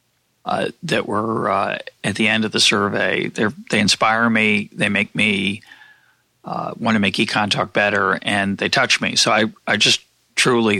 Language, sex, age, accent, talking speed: English, male, 40-59, American, 185 wpm